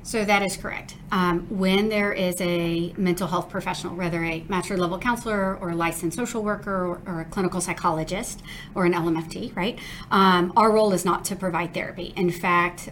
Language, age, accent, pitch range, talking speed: English, 40-59, American, 170-190 Hz, 185 wpm